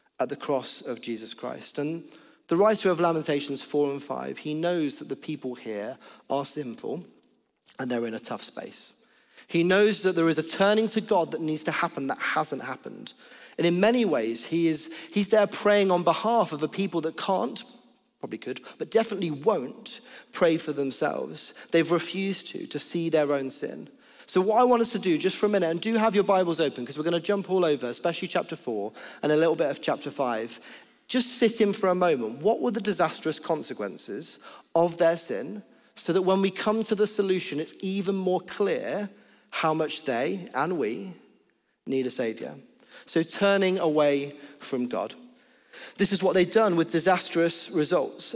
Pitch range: 155-205 Hz